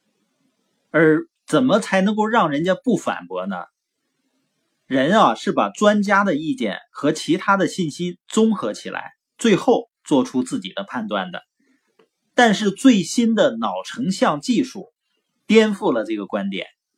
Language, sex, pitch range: Chinese, male, 190-260 Hz